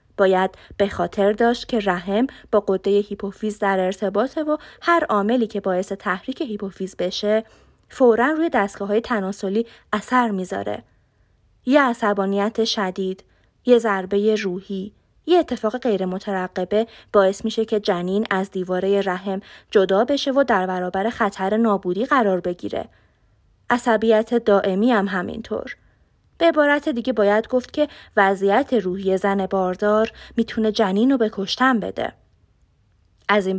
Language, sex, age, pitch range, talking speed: Persian, female, 20-39, 195-245 Hz, 130 wpm